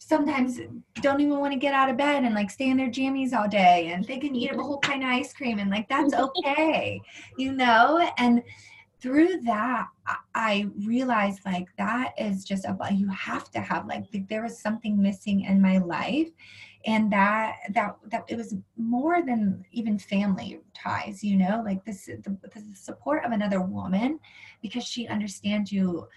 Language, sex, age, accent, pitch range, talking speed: English, female, 20-39, American, 195-245 Hz, 185 wpm